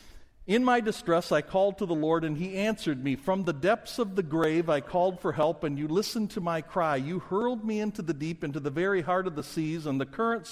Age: 50-69